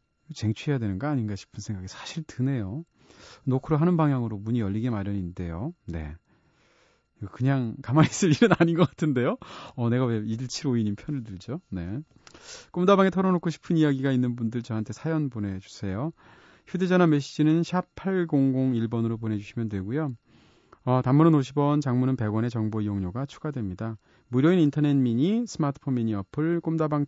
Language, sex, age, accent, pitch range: Korean, male, 30-49, native, 110-155 Hz